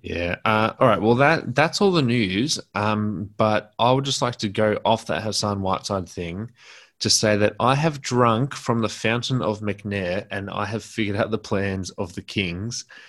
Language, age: English, 20-39